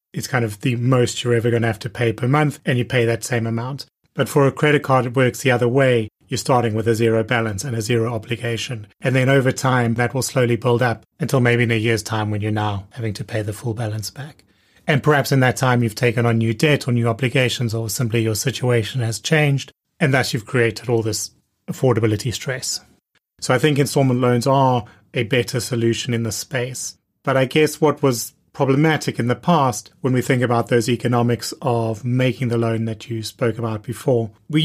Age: 30-49